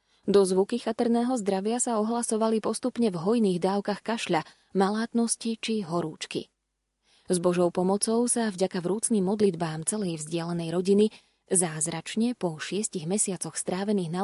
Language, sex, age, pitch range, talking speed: Slovak, female, 20-39, 180-220 Hz, 125 wpm